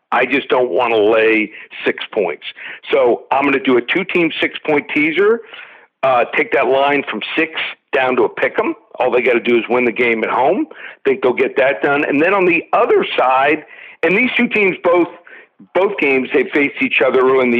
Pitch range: 130-170 Hz